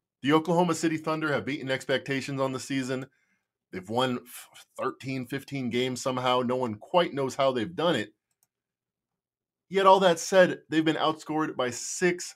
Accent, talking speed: American, 160 wpm